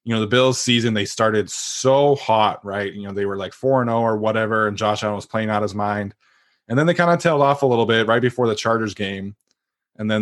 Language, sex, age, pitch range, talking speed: English, male, 20-39, 105-120 Hz, 260 wpm